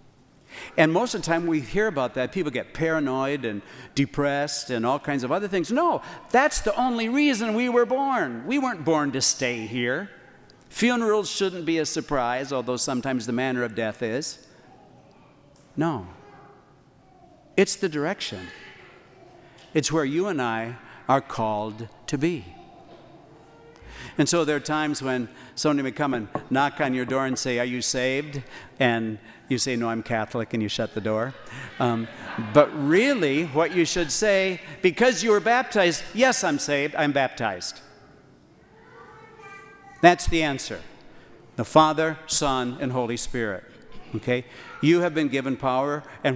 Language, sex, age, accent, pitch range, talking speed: English, male, 60-79, American, 125-160 Hz, 155 wpm